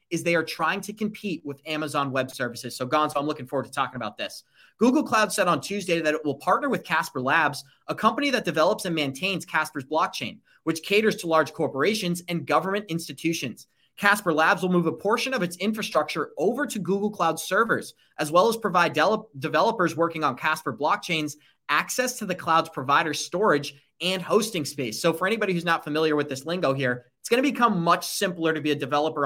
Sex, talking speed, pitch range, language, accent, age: male, 205 wpm, 150-200 Hz, English, American, 30-49